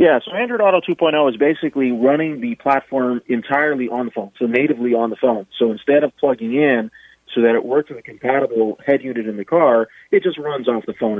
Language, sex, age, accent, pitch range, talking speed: English, male, 30-49, American, 115-135 Hz, 225 wpm